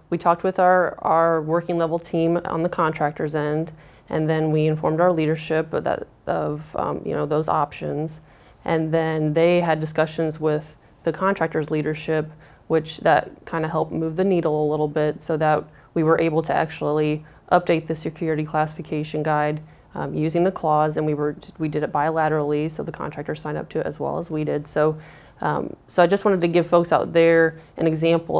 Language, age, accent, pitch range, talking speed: English, 30-49, American, 155-165 Hz, 195 wpm